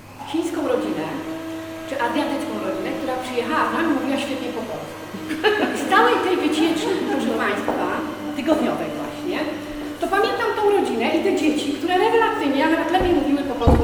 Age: 40-59